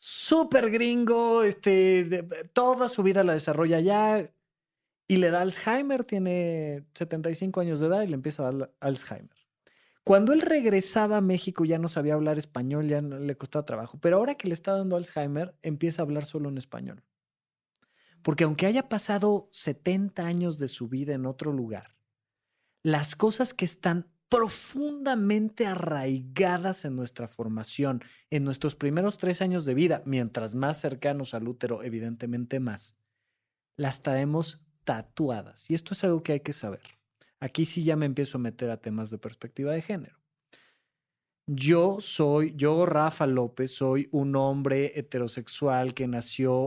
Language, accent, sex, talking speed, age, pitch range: Spanish, Mexican, male, 160 wpm, 30-49, 130-185 Hz